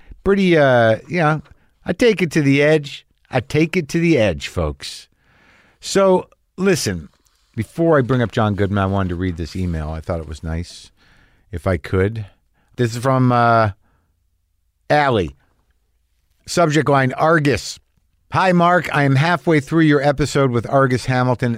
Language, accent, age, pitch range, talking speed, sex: English, American, 50-69, 100-140 Hz, 160 wpm, male